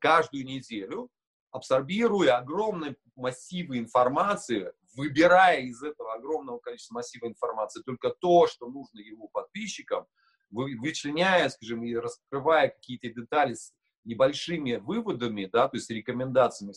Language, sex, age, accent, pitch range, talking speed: Russian, male, 40-59, native, 120-185 Hz, 115 wpm